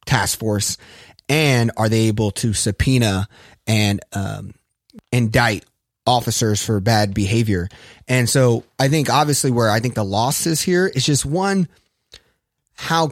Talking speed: 140 wpm